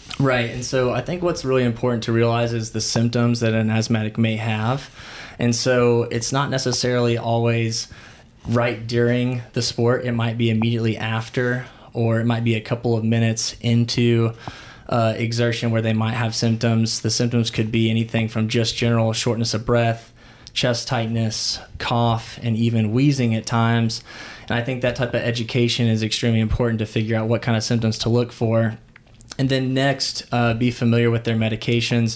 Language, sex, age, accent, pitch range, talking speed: English, male, 20-39, American, 115-120 Hz, 180 wpm